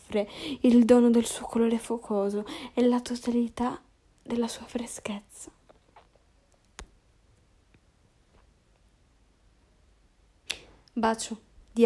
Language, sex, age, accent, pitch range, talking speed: Italian, female, 10-29, native, 195-240 Hz, 70 wpm